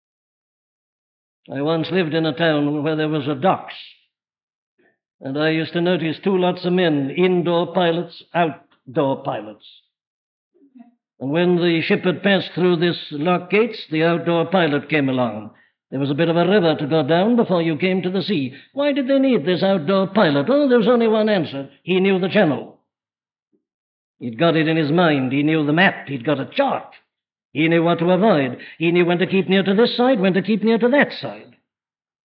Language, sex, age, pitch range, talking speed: English, male, 60-79, 150-205 Hz, 200 wpm